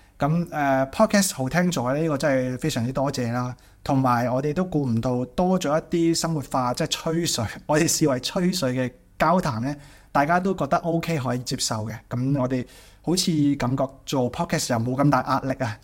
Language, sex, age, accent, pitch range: Chinese, male, 20-39, native, 125-160 Hz